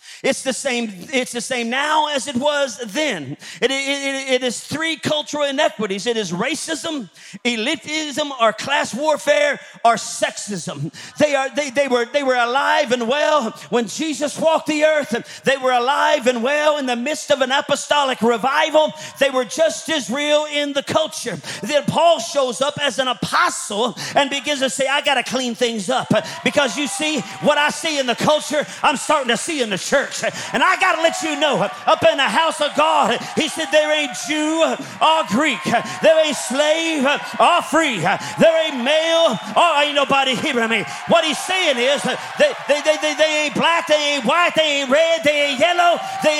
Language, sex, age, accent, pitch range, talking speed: English, male, 40-59, American, 260-315 Hz, 195 wpm